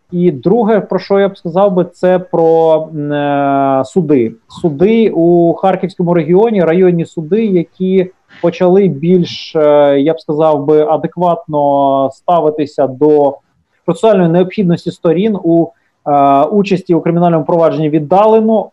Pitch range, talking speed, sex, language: 155-190 Hz, 125 wpm, male, Ukrainian